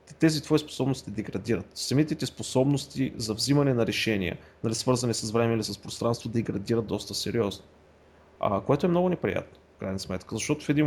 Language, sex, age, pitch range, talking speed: Bulgarian, male, 30-49, 110-140 Hz, 175 wpm